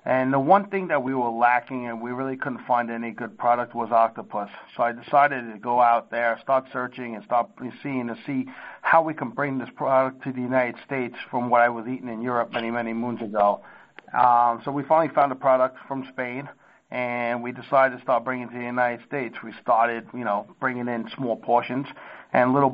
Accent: American